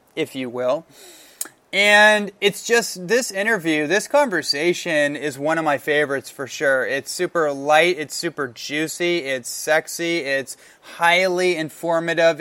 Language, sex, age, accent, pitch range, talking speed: English, male, 20-39, American, 145-175 Hz, 135 wpm